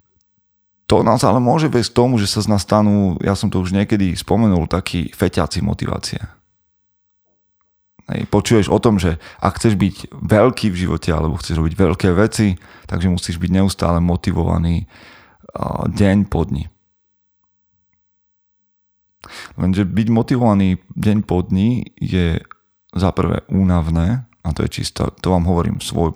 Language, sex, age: Slovak, male, 30-49